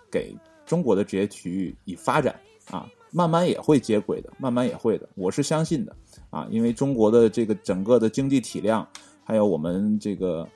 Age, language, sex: 20-39, Chinese, male